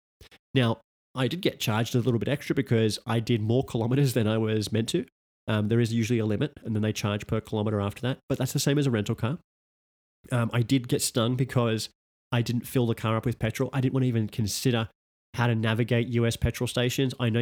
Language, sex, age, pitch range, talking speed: English, male, 30-49, 110-130 Hz, 240 wpm